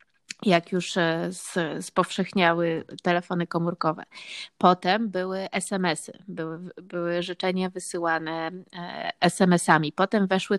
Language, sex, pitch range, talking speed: Polish, female, 185-215 Hz, 85 wpm